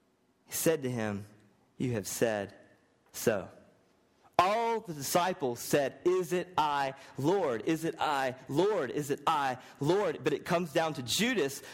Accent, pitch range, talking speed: American, 105-170 Hz, 155 wpm